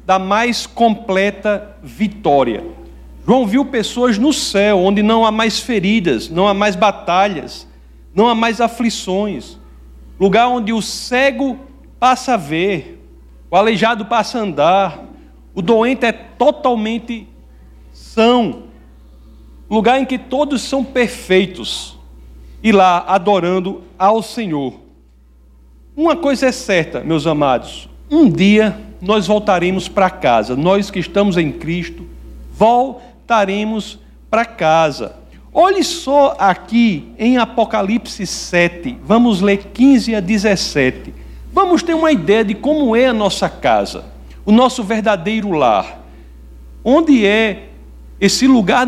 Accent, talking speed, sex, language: Brazilian, 120 wpm, male, Portuguese